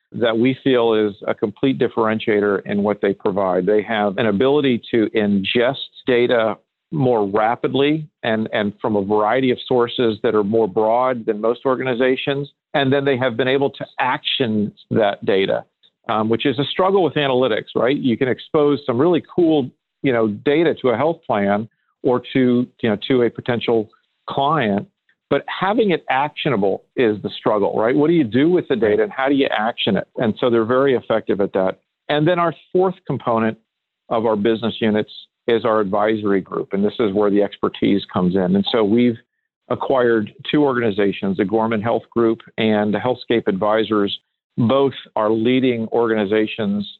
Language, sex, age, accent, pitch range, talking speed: English, male, 50-69, American, 105-130 Hz, 180 wpm